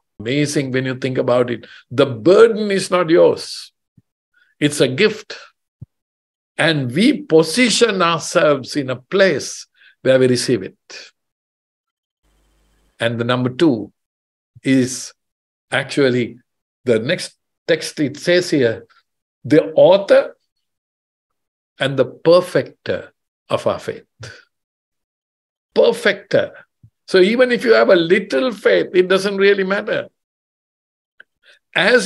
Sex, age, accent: male, 50-69, Indian